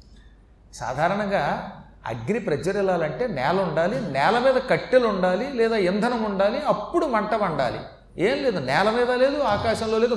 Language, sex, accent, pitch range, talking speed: Telugu, male, native, 155-235 Hz, 135 wpm